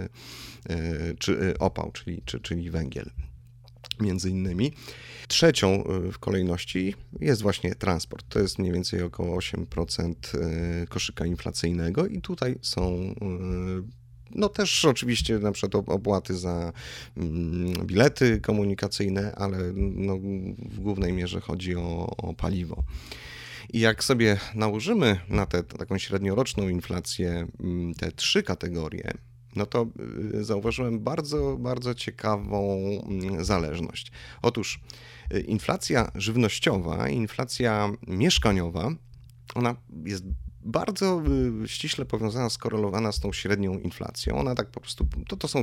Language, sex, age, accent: Polish, male, 30-49, native